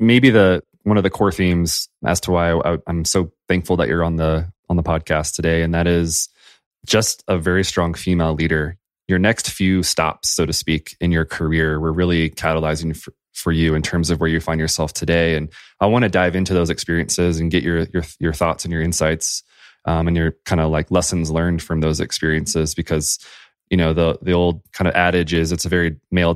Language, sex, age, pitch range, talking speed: English, male, 20-39, 80-90 Hz, 220 wpm